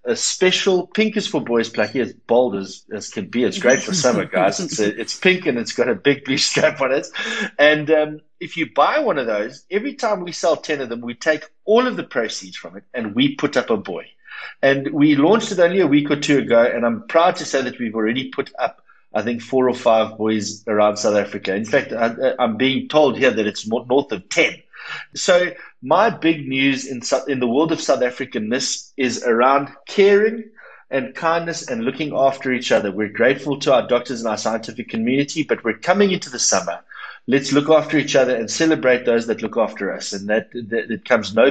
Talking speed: 225 wpm